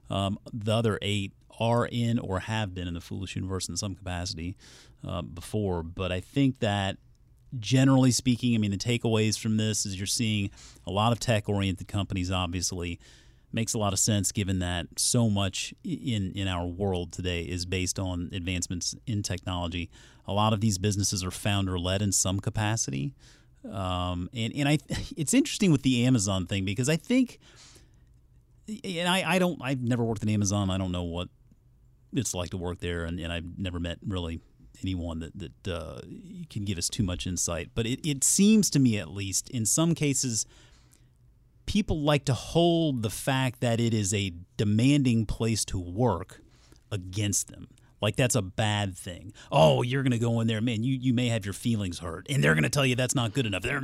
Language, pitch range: English, 90-125 Hz